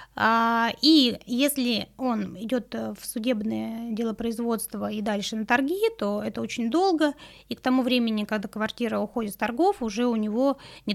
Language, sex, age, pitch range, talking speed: Russian, female, 20-39, 215-260 Hz, 155 wpm